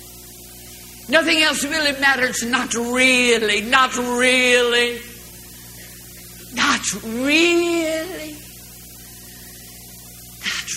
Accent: American